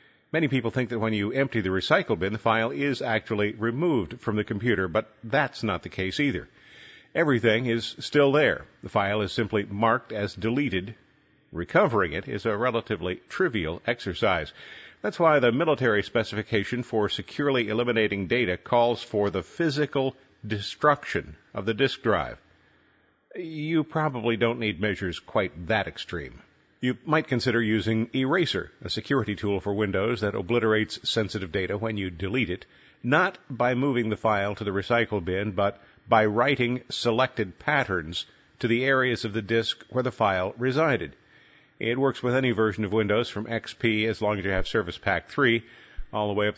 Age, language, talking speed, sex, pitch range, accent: 50-69, English, 170 wpm, male, 100-125 Hz, American